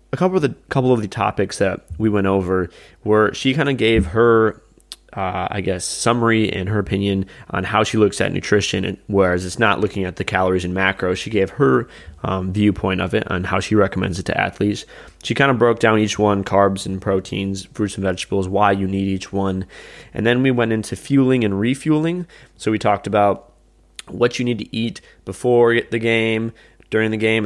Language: English